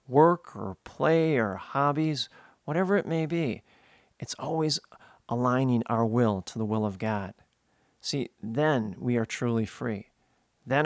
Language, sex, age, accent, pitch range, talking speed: English, male, 40-59, American, 115-140 Hz, 145 wpm